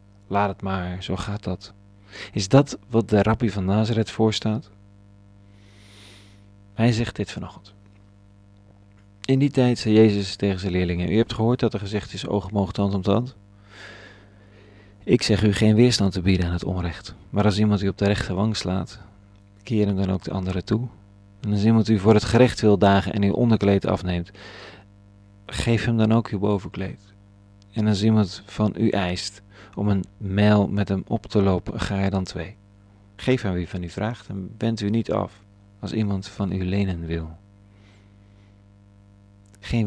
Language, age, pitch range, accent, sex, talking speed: Dutch, 40-59, 100-110 Hz, Dutch, male, 180 wpm